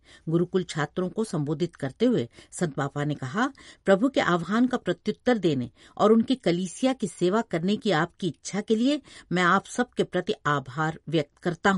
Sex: female